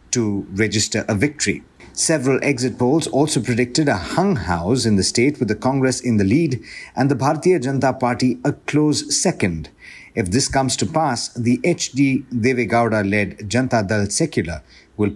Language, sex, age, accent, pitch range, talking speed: English, male, 50-69, Indian, 105-140 Hz, 160 wpm